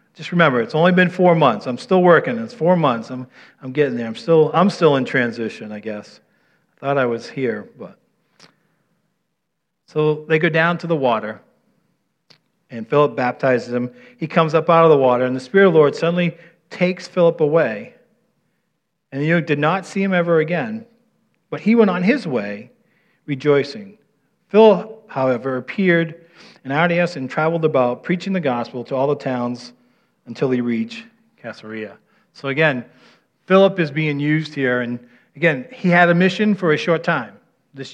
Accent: American